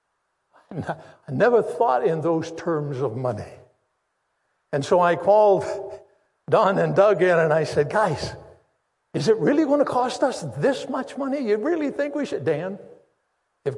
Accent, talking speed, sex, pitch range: American, 160 wpm, male, 145-185 Hz